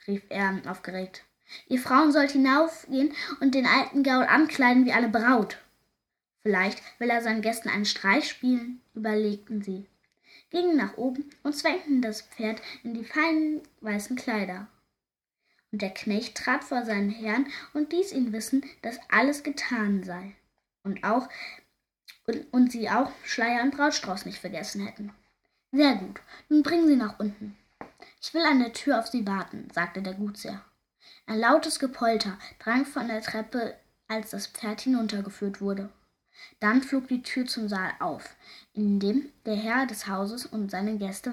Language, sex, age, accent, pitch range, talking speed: German, female, 10-29, German, 205-260 Hz, 160 wpm